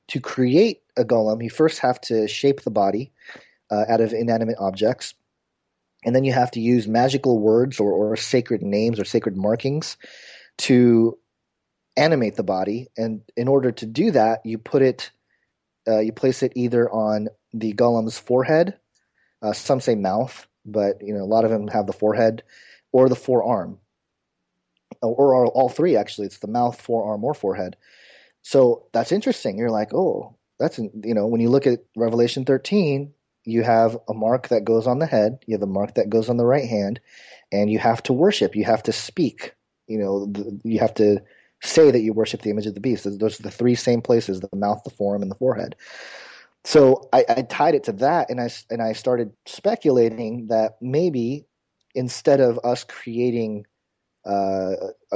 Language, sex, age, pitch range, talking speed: English, male, 30-49, 105-125 Hz, 185 wpm